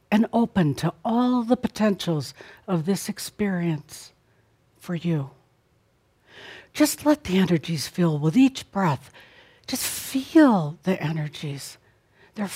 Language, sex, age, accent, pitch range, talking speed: English, female, 60-79, American, 135-215 Hz, 115 wpm